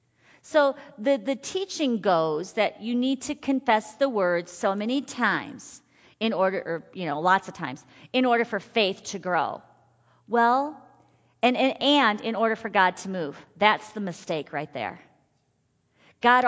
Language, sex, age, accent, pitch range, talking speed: English, female, 40-59, American, 180-235 Hz, 165 wpm